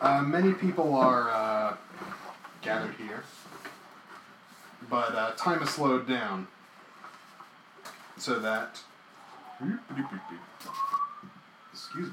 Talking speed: 80 wpm